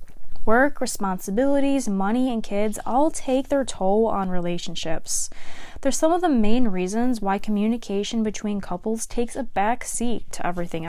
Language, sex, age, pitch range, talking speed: English, female, 20-39, 190-250 Hz, 150 wpm